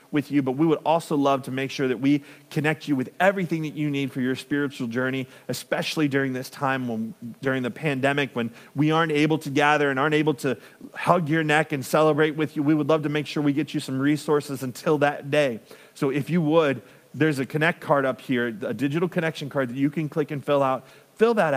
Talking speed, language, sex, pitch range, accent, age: 235 wpm, English, male, 135-160 Hz, American, 40-59